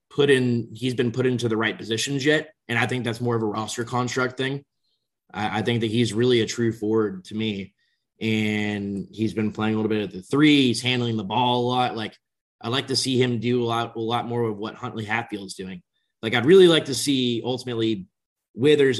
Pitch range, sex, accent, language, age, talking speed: 110-125 Hz, male, American, English, 20-39, 225 wpm